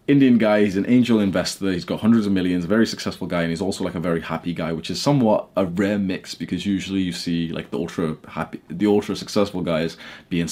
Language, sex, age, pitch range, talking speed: English, male, 20-39, 80-105 Hz, 220 wpm